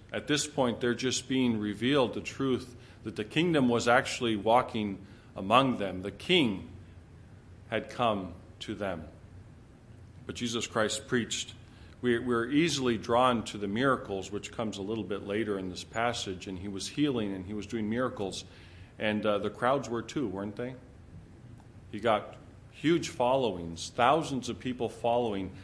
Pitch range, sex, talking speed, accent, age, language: 100-120 Hz, male, 155 wpm, American, 40-59, English